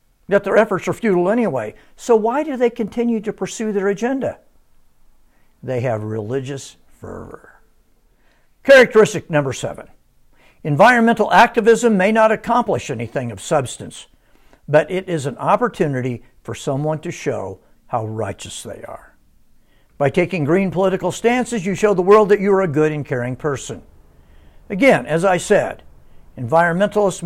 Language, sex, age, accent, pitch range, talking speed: English, male, 60-79, American, 125-200 Hz, 145 wpm